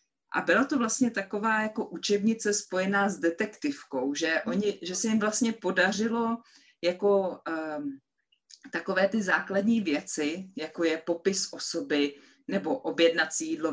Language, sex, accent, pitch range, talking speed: English, female, Czech, 155-220 Hz, 130 wpm